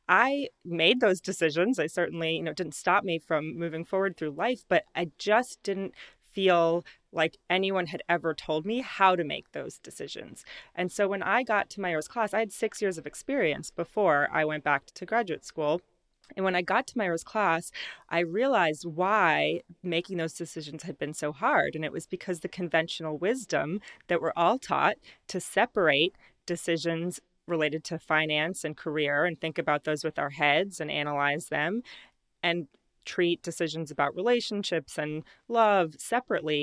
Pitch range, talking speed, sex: 155-190 Hz, 175 wpm, female